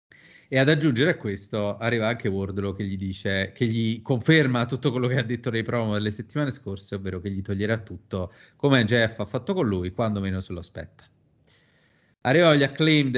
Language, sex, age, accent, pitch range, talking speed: Italian, male, 30-49, native, 105-155 Hz, 195 wpm